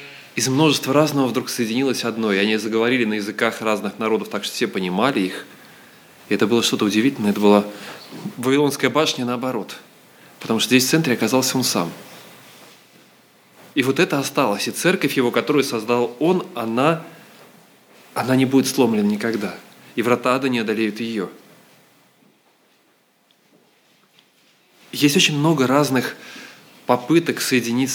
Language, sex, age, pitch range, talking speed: Russian, male, 20-39, 120-165 Hz, 135 wpm